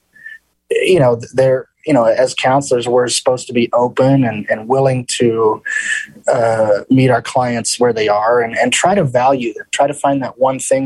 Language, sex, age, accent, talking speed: English, male, 20-39, American, 195 wpm